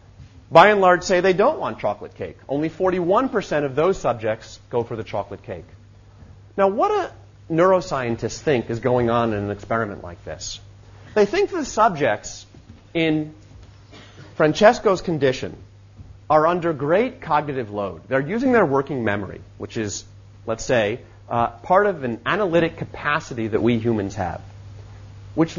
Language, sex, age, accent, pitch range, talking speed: English, male, 30-49, American, 100-160 Hz, 150 wpm